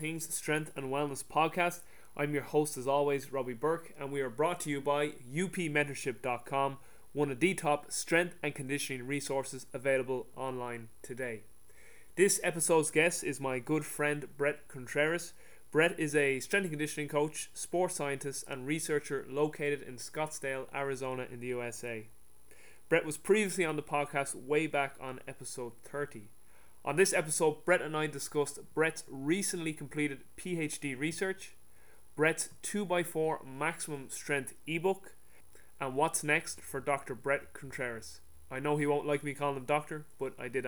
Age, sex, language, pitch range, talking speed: 20-39, male, English, 135-160 Hz, 155 wpm